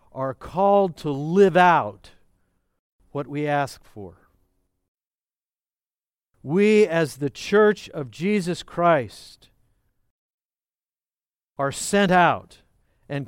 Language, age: English, 60-79